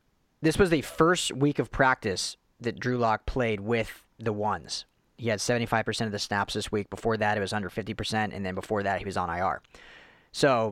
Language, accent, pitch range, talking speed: English, American, 110-145 Hz, 205 wpm